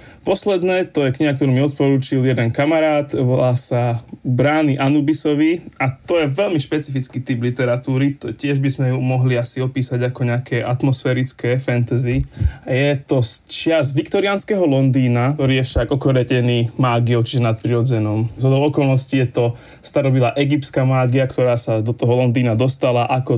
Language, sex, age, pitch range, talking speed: Slovak, male, 20-39, 120-140 Hz, 150 wpm